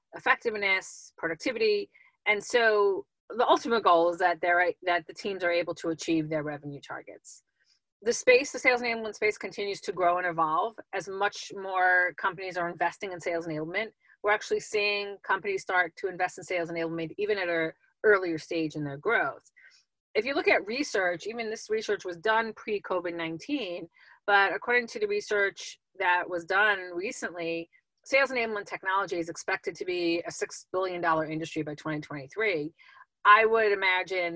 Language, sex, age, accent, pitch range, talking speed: English, female, 30-49, American, 165-215 Hz, 165 wpm